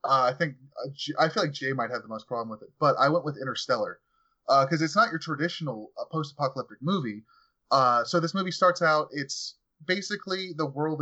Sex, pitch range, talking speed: male, 125-155 Hz, 220 wpm